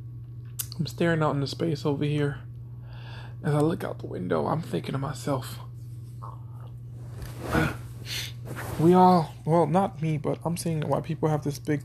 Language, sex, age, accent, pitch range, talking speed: English, male, 20-39, American, 120-150 Hz, 155 wpm